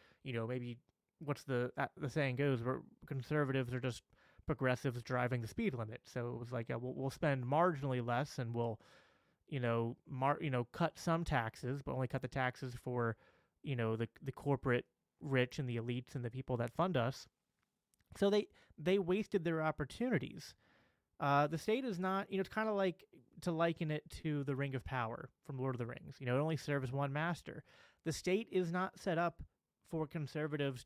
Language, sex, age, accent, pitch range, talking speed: English, male, 30-49, American, 125-160 Hz, 200 wpm